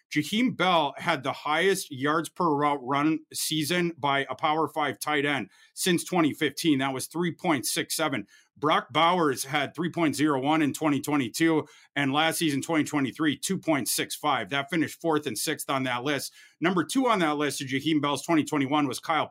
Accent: American